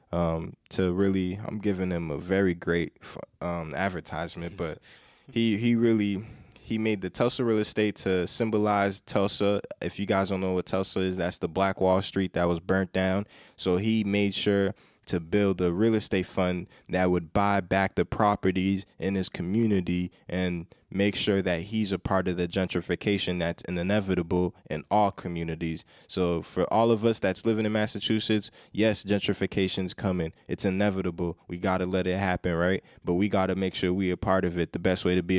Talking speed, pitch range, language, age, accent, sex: 190 wpm, 90-100 Hz, English, 20-39, American, male